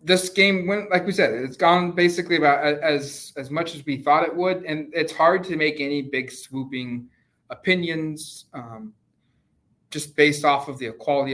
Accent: American